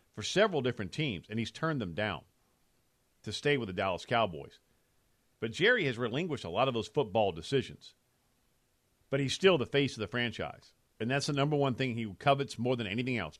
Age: 50-69